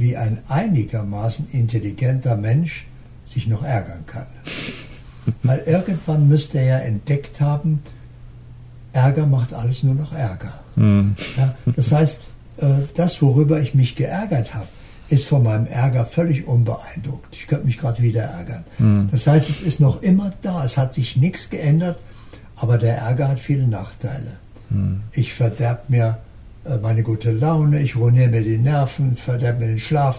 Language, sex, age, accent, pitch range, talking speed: German, male, 60-79, German, 115-140 Hz, 150 wpm